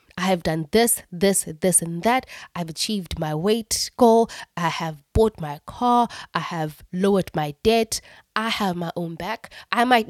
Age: 20-39